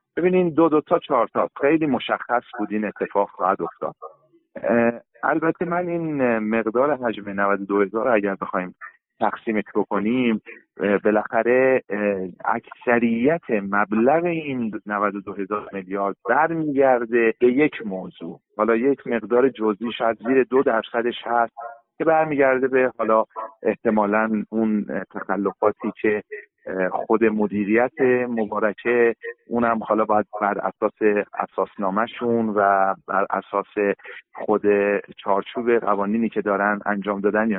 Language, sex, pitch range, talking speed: Persian, male, 105-130 Hz, 125 wpm